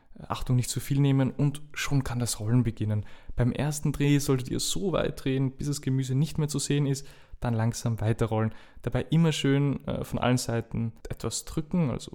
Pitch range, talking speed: 115-135 Hz, 195 wpm